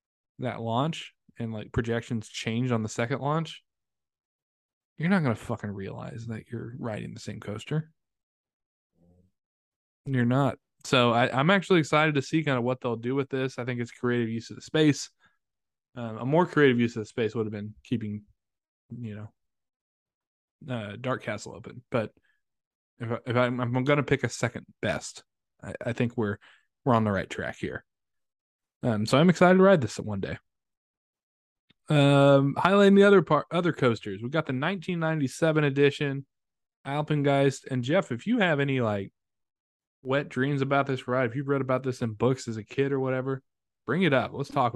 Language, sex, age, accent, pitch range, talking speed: English, male, 20-39, American, 115-150 Hz, 185 wpm